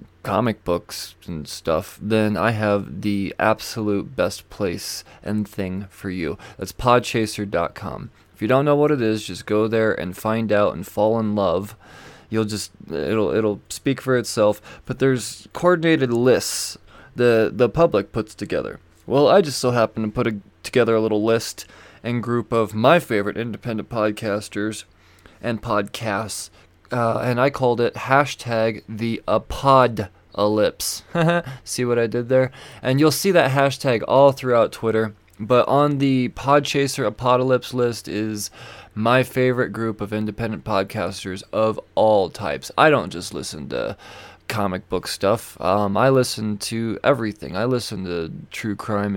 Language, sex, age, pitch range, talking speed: English, male, 20-39, 105-125 Hz, 155 wpm